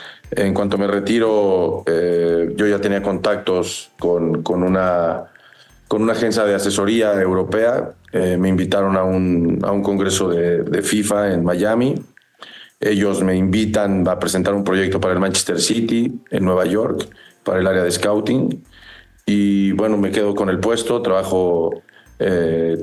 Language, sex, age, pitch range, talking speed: Spanish, male, 40-59, 90-105 Hz, 155 wpm